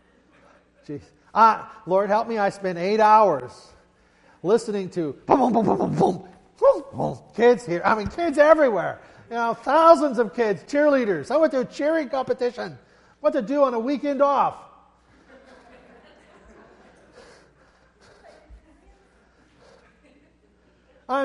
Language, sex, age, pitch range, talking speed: English, male, 50-69, 185-280 Hz, 130 wpm